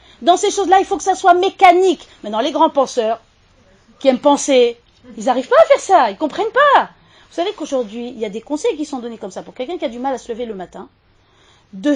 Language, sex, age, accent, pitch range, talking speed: French, female, 40-59, French, 220-310 Hz, 250 wpm